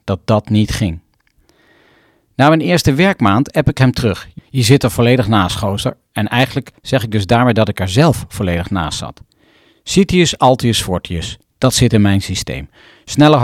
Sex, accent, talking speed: male, Dutch, 180 wpm